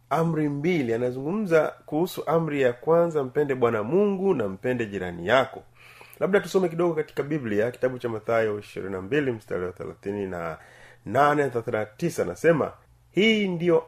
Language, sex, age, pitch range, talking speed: Swahili, male, 30-49, 120-165 Hz, 130 wpm